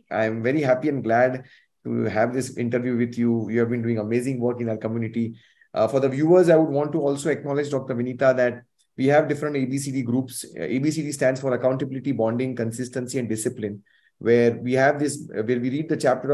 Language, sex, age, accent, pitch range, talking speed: English, male, 20-39, Indian, 115-145 Hz, 205 wpm